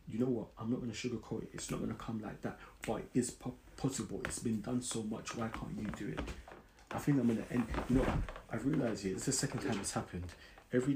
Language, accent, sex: English, British, male